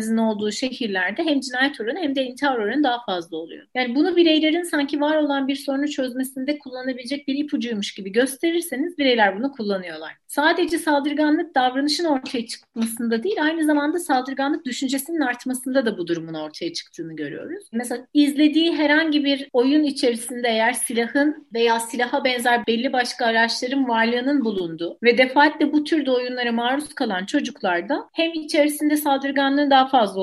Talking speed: 150 wpm